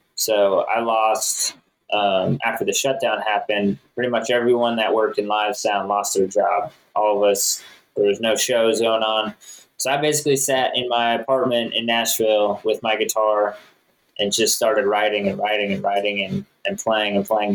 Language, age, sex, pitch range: English, 20-39, male, 105-125 Hz